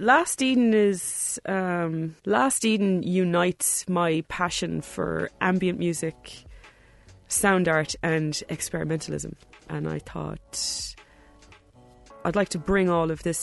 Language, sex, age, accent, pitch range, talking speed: English, female, 20-39, Irish, 155-195 Hz, 115 wpm